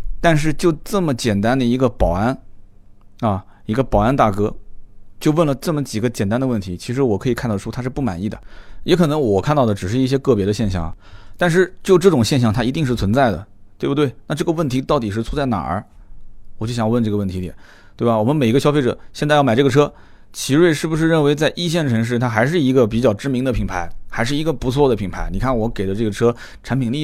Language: Chinese